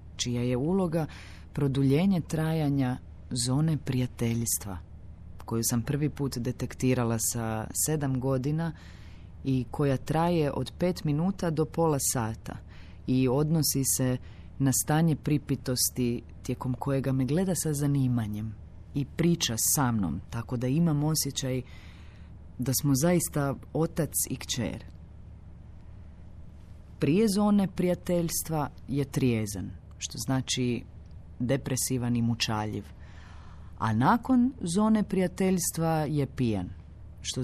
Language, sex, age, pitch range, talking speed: Croatian, female, 30-49, 90-140 Hz, 105 wpm